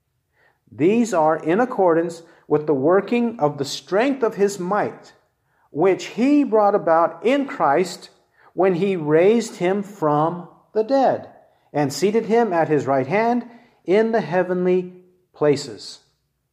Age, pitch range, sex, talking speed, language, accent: 40-59, 150-200 Hz, male, 135 wpm, English, American